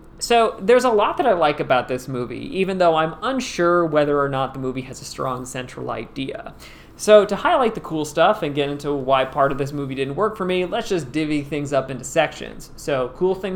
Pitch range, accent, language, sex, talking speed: 140-190 Hz, American, English, male, 230 wpm